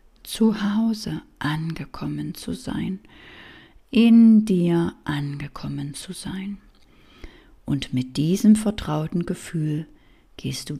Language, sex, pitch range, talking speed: German, female, 145-200 Hz, 95 wpm